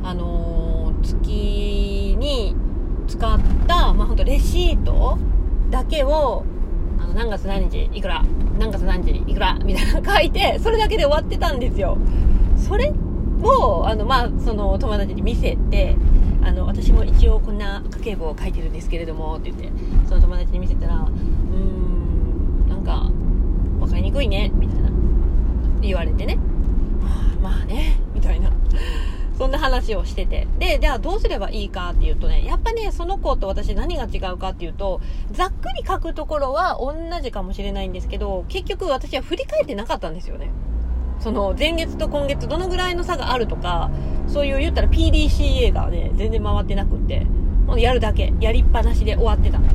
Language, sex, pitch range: Japanese, female, 70-95 Hz